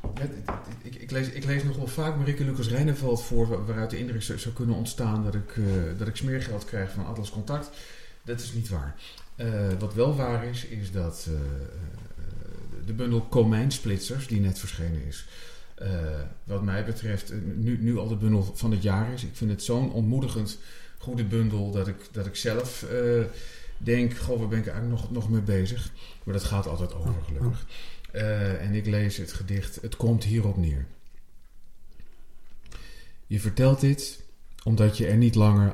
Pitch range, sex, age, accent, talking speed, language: 95-115 Hz, male, 40-59, Dutch, 190 wpm, Dutch